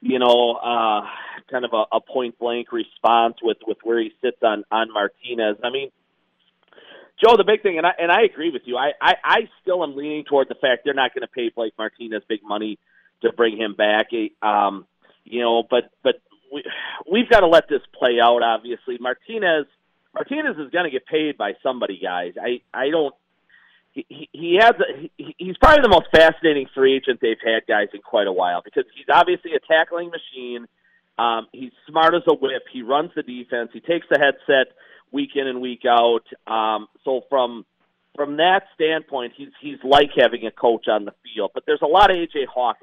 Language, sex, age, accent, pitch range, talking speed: English, male, 40-59, American, 115-175 Hz, 205 wpm